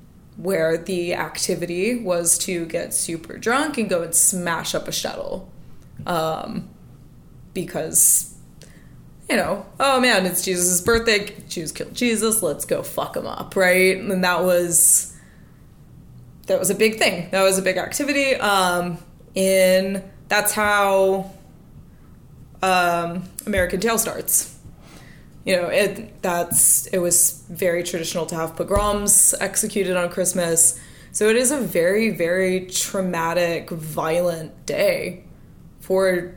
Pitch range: 175-205 Hz